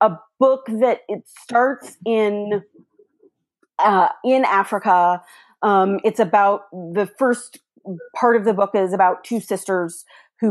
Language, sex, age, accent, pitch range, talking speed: English, female, 30-49, American, 190-230 Hz, 130 wpm